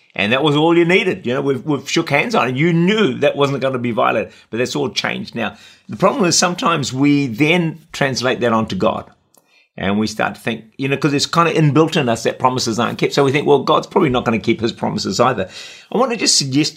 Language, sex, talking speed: English, male, 260 wpm